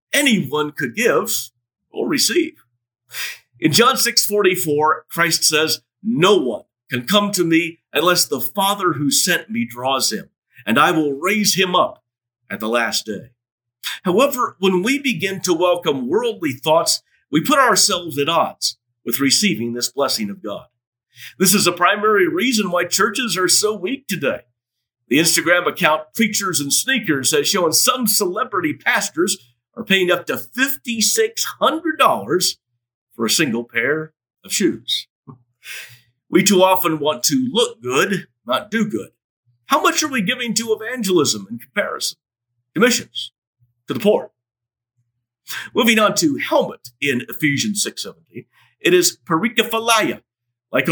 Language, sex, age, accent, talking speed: English, male, 50-69, American, 140 wpm